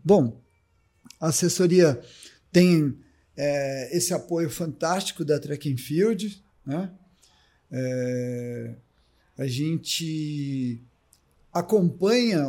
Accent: Brazilian